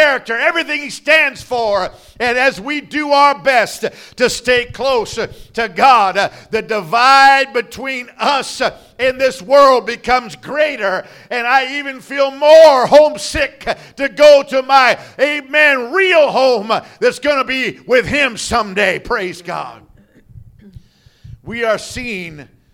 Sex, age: male, 50-69